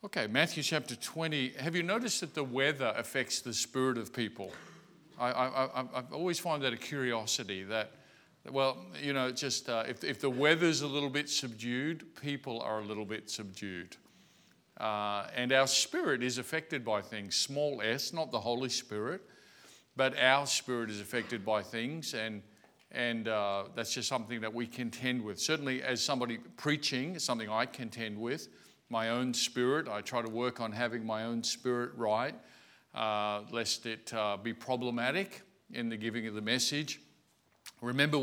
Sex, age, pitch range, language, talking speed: male, 50-69, 115-140 Hz, English, 170 wpm